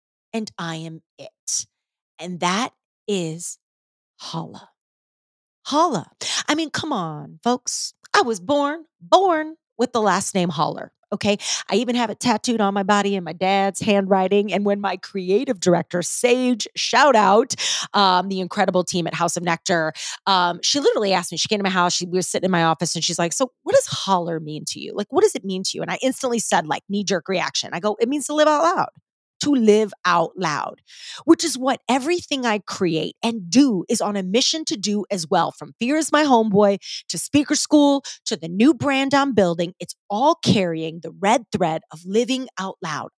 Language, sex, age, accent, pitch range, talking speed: English, female, 30-49, American, 180-260 Hz, 200 wpm